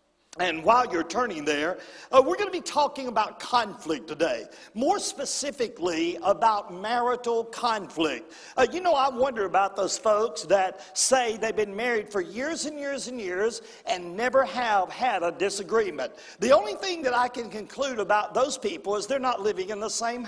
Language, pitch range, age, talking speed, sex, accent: English, 215-270 Hz, 50-69, 180 wpm, male, American